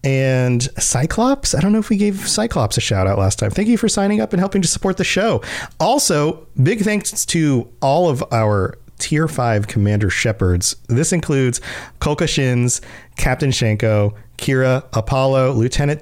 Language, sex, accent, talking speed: English, male, American, 170 wpm